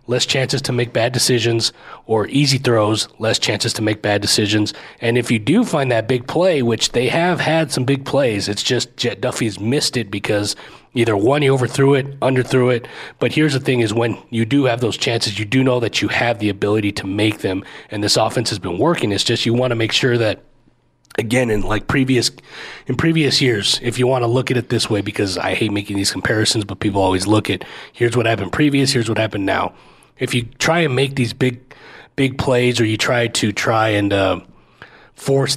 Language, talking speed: English, 225 wpm